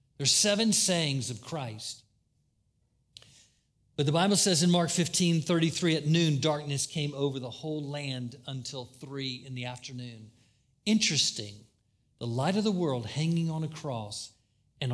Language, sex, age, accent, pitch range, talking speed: English, male, 50-69, American, 115-150 Hz, 145 wpm